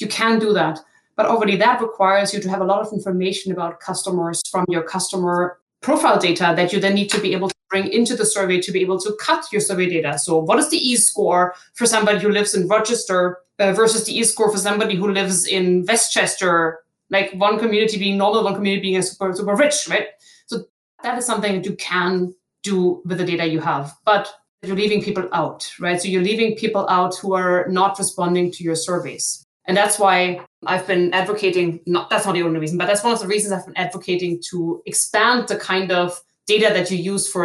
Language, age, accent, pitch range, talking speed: English, 20-39, German, 180-215 Hz, 220 wpm